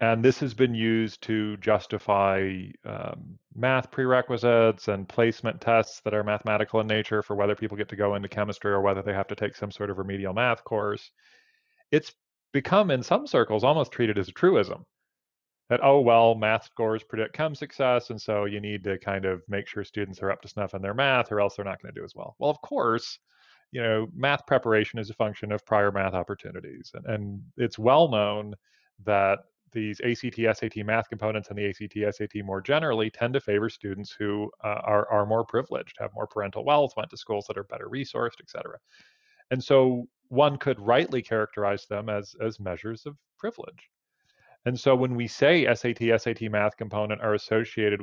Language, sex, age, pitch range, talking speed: English, male, 30-49, 105-120 Hz, 200 wpm